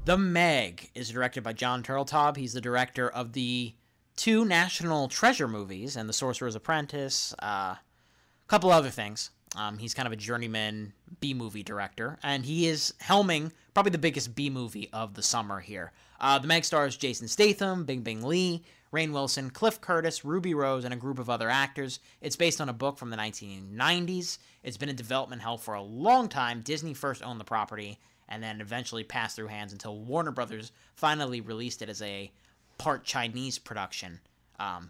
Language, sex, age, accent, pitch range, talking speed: English, male, 30-49, American, 110-155 Hz, 180 wpm